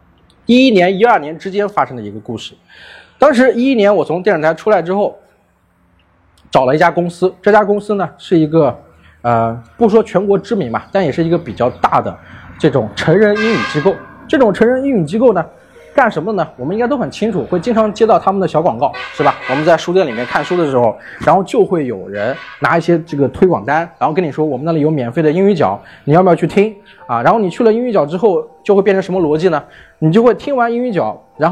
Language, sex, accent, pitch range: Chinese, male, native, 155-220 Hz